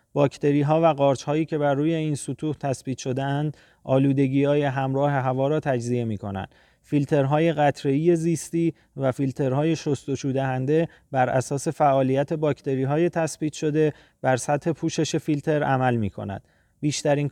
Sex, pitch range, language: male, 135-155 Hz, Persian